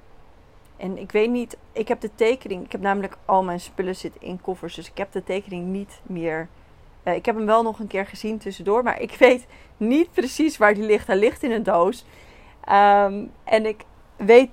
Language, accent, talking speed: Dutch, Dutch, 210 wpm